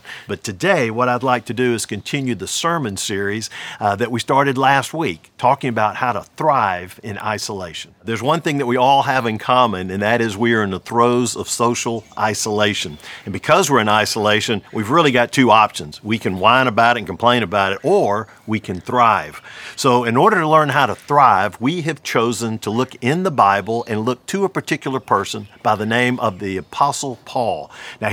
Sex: male